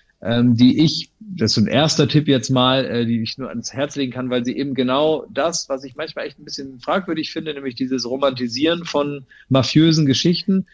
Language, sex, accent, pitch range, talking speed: English, male, German, 120-150 Hz, 210 wpm